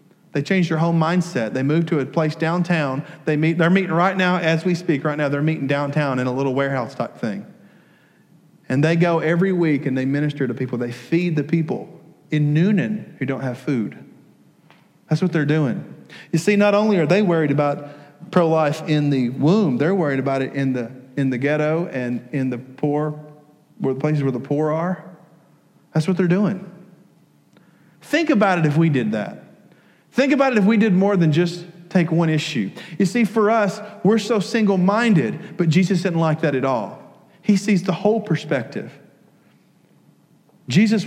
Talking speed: 190 wpm